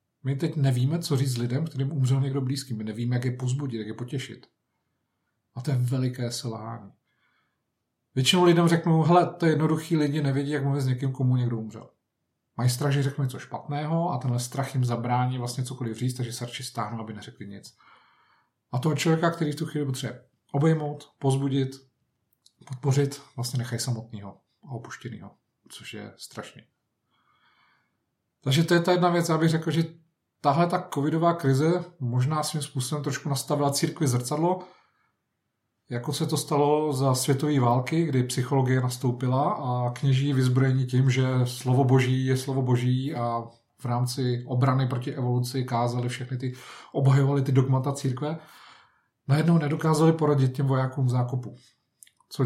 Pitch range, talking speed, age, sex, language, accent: 125-145 Hz, 160 wpm, 40-59, male, Czech, native